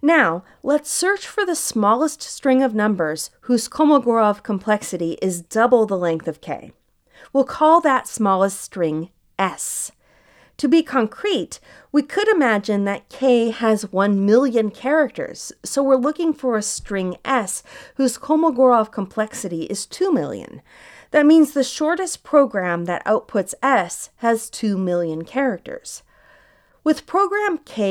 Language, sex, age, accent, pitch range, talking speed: English, female, 40-59, American, 195-290 Hz, 140 wpm